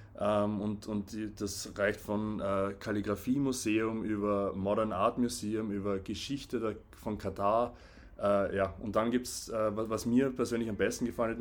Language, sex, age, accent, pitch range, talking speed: German, male, 20-39, German, 100-115 Hz, 160 wpm